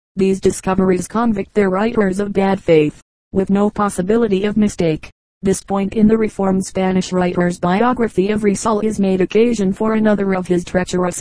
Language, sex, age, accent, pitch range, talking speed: English, female, 40-59, American, 185-210 Hz, 165 wpm